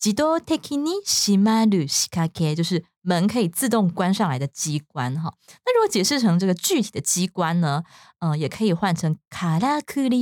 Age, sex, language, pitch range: 20-39, female, Chinese, 165-235 Hz